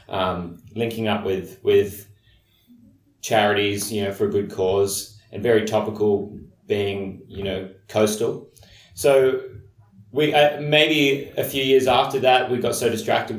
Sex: male